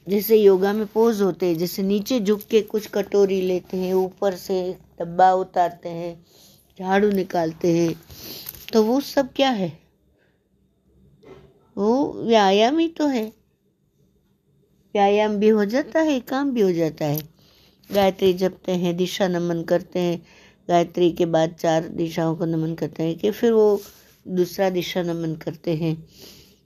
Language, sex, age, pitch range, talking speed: Hindi, female, 60-79, 160-200 Hz, 150 wpm